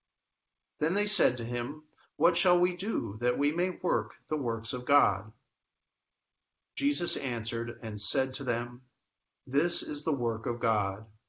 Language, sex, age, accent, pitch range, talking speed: English, male, 50-69, American, 115-145 Hz, 155 wpm